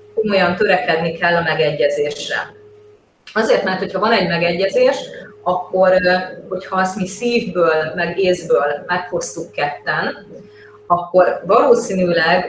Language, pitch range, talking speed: Hungarian, 170-200 Hz, 105 wpm